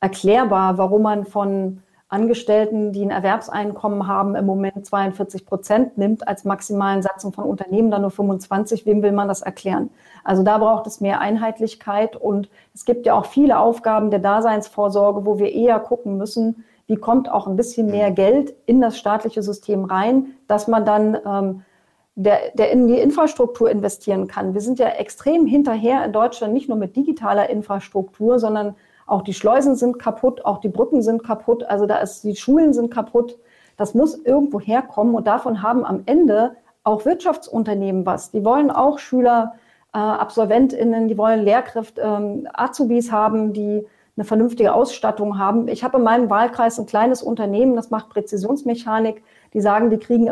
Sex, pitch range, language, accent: female, 205-240 Hz, German, German